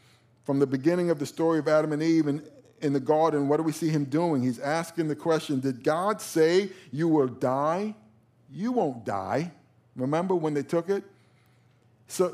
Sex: male